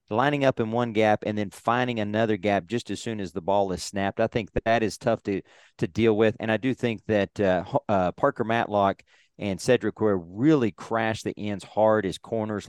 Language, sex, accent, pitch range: English, male, American, 100-120 Hz